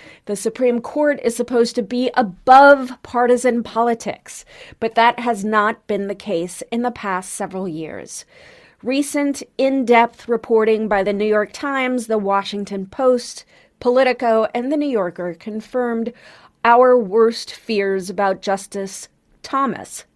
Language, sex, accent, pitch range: English, female, American, 205-250 Hz